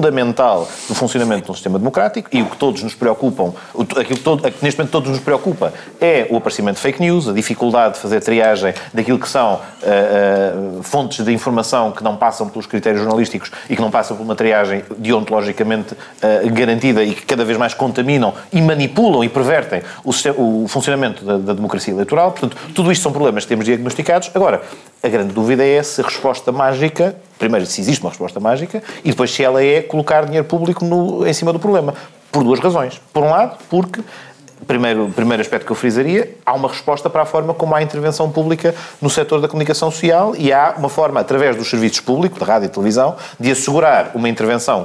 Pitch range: 115-155 Hz